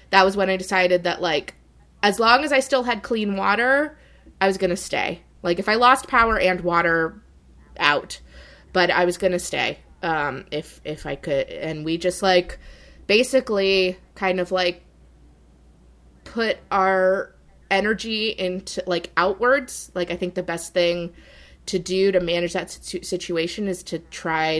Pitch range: 165-200 Hz